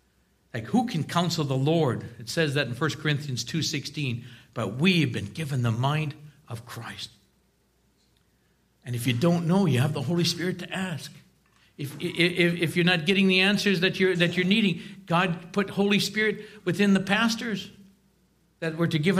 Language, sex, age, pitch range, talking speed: English, male, 60-79, 135-185 Hz, 175 wpm